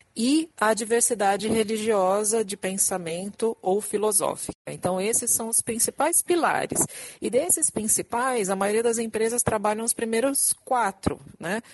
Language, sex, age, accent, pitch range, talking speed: Portuguese, female, 50-69, Brazilian, 180-240 Hz, 135 wpm